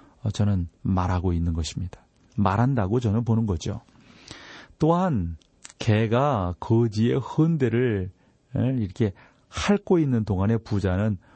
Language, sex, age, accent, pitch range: Korean, male, 40-59, native, 95-130 Hz